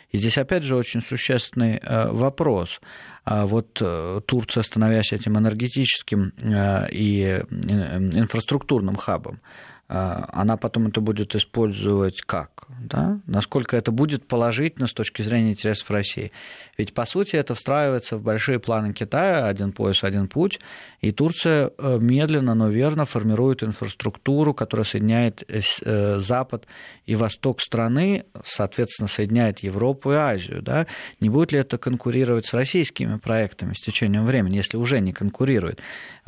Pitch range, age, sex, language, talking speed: 105-125 Hz, 20-39, male, Russian, 130 wpm